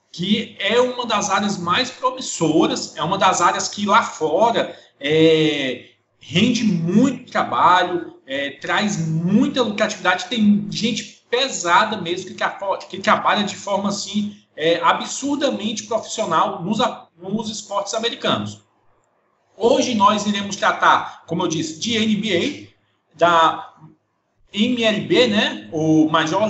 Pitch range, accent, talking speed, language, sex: 175-230 Hz, Brazilian, 120 wpm, Portuguese, male